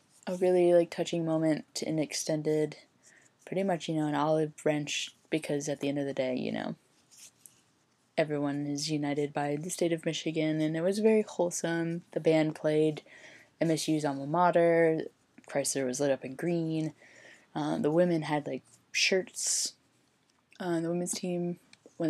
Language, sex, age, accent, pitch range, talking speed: English, female, 10-29, American, 145-175 Hz, 160 wpm